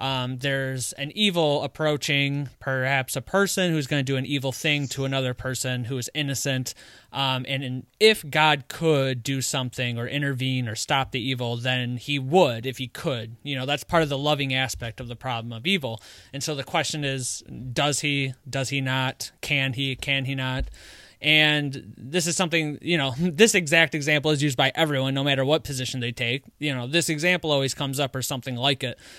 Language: English